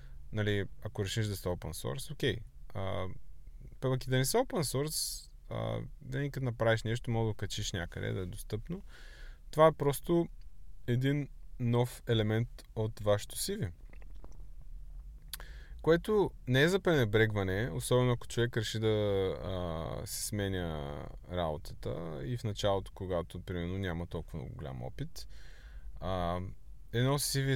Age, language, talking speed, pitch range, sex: 20-39, Bulgarian, 135 wpm, 90-125 Hz, male